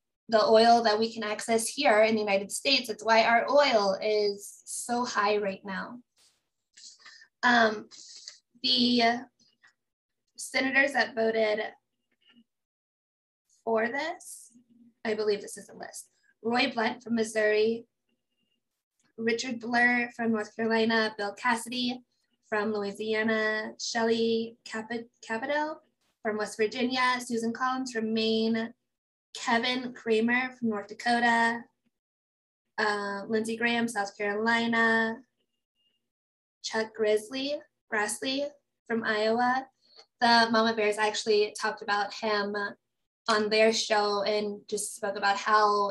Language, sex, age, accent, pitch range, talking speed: English, female, 10-29, American, 210-235 Hz, 110 wpm